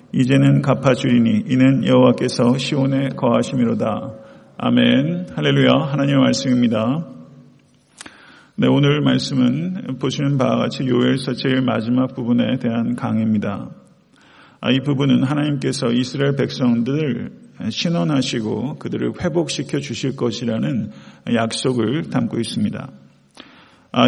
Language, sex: Korean, male